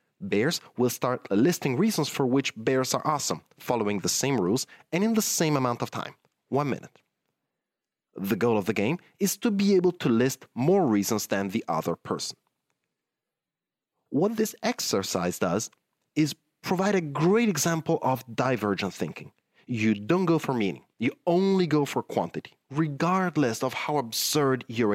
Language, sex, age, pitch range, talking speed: English, male, 30-49, 110-165 Hz, 160 wpm